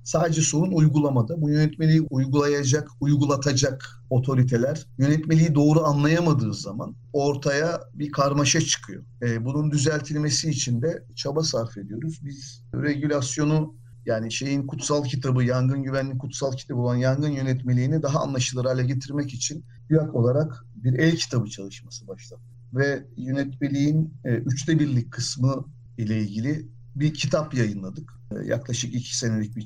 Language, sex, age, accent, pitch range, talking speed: Turkish, male, 50-69, native, 120-150 Hz, 130 wpm